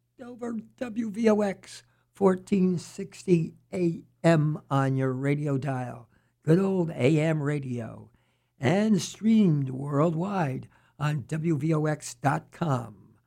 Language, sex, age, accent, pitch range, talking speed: English, male, 60-79, American, 130-170 Hz, 75 wpm